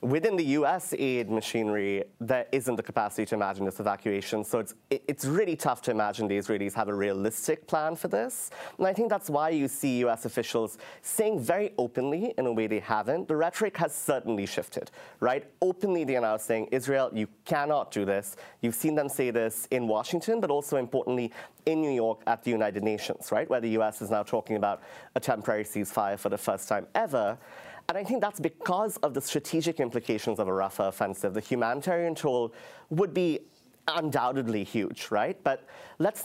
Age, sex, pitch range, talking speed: 30-49, male, 105-150 Hz, 190 wpm